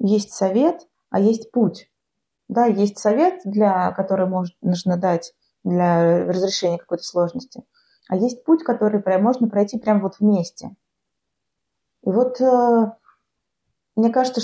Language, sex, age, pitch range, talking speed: Russian, female, 20-39, 185-245 Hz, 130 wpm